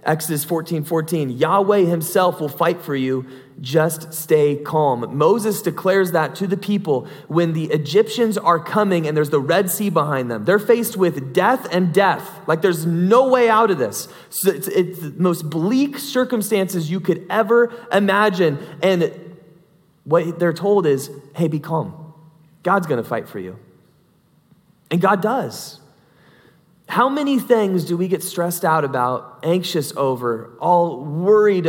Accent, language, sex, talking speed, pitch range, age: American, English, male, 155 wpm, 150-190 Hz, 20-39